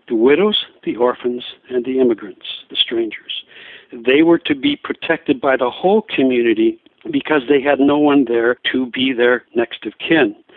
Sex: male